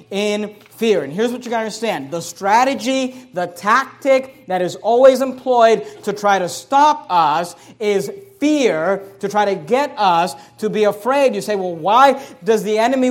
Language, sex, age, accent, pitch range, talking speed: English, male, 40-59, American, 190-260 Hz, 180 wpm